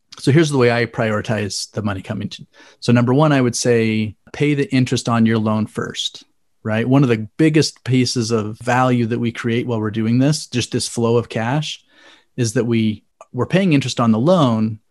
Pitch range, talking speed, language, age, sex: 110-130 Hz, 215 wpm, English, 30-49, male